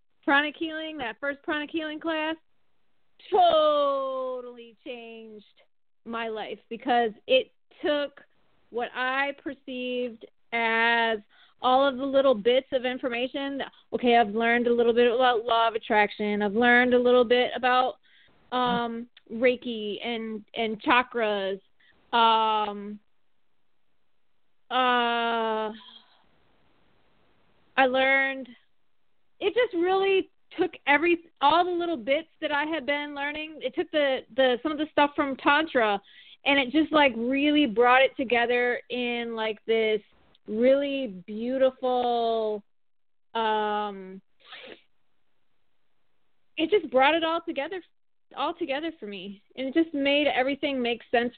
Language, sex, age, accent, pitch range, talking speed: English, female, 20-39, American, 230-285 Hz, 125 wpm